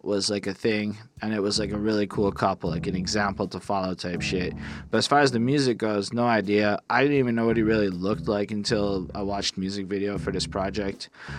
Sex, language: male, English